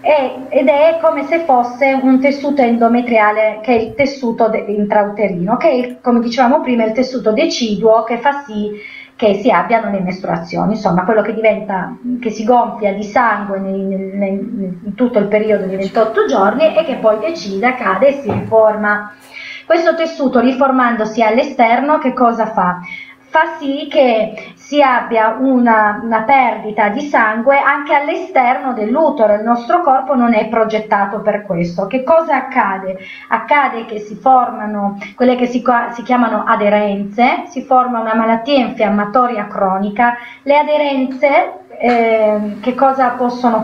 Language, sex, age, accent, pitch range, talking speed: Italian, female, 30-49, native, 210-265 Hz, 150 wpm